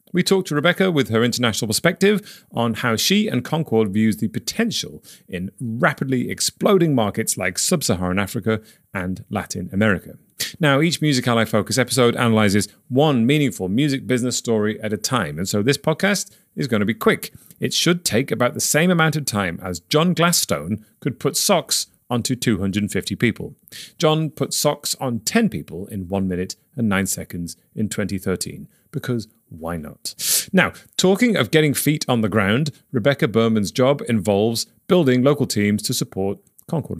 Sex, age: male, 30-49